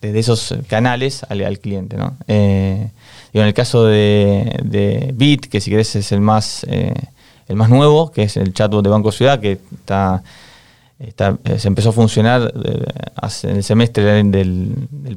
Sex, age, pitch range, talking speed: male, 20-39, 100-125 Hz, 170 wpm